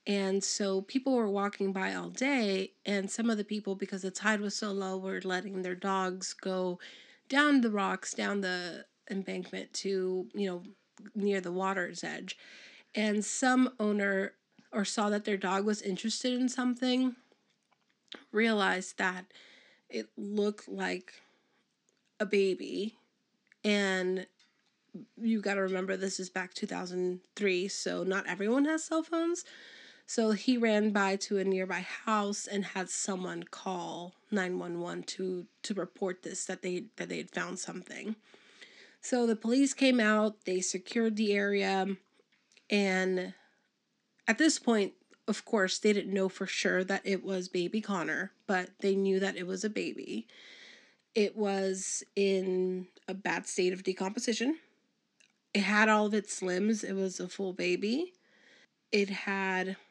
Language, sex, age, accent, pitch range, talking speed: English, female, 30-49, American, 185-215 Hz, 150 wpm